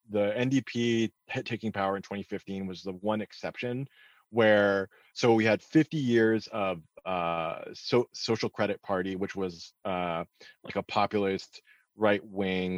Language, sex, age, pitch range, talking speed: English, male, 30-49, 95-125 Hz, 135 wpm